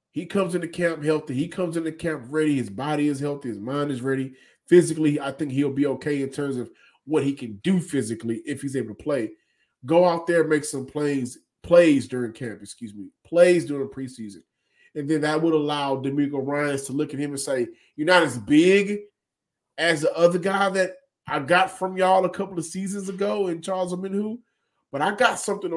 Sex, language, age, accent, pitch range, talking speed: male, English, 30-49, American, 135-175 Hz, 210 wpm